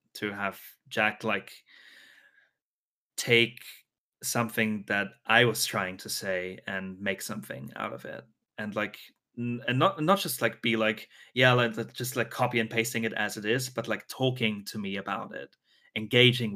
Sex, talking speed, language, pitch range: male, 165 wpm, English, 110-145 Hz